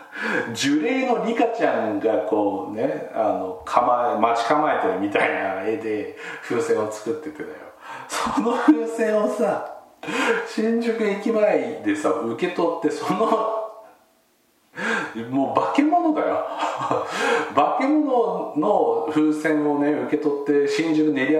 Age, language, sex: 40-59, Japanese, male